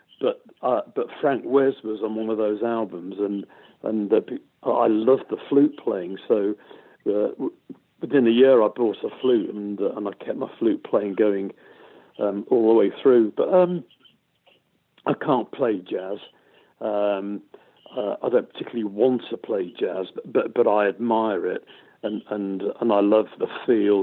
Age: 50-69